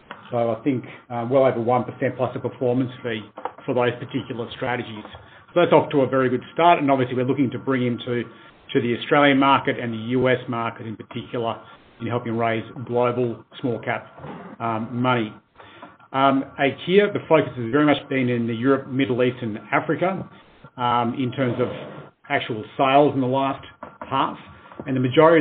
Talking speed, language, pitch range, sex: 180 wpm, English, 120-140 Hz, male